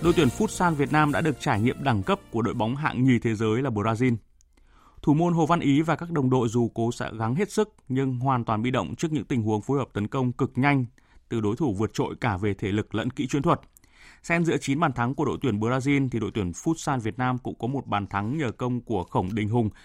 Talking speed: 275 wpm